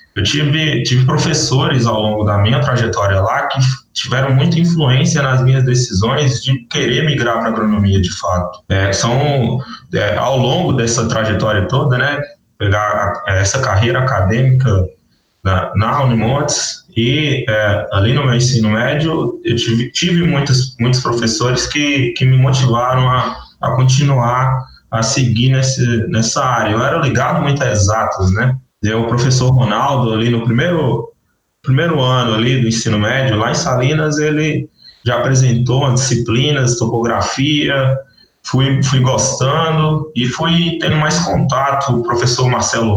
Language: Portuguese